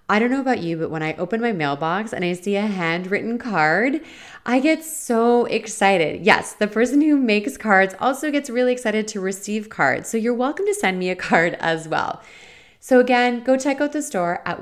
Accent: American